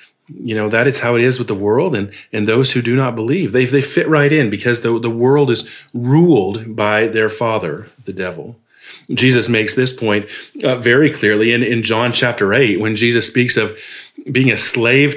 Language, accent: English, American